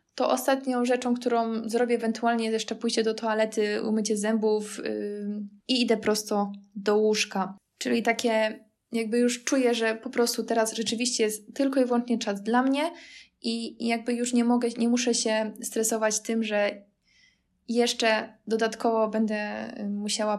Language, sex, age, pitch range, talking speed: Polish, female, 20-39, 215-245 Hz, 145 wpm